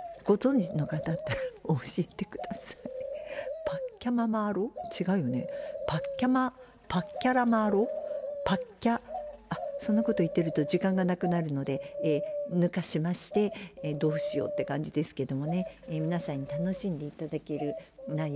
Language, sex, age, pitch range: Japanese, female, 50-69, 150-240 Hz